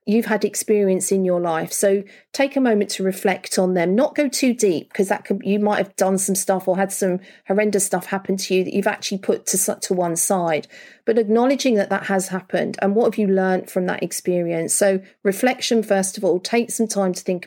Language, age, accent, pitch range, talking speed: English, 40-59, British, 185-220 Hz, 230 wpm